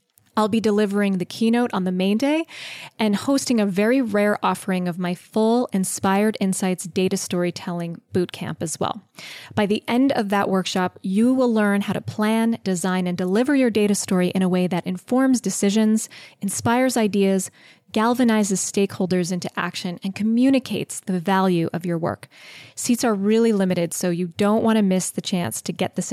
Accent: American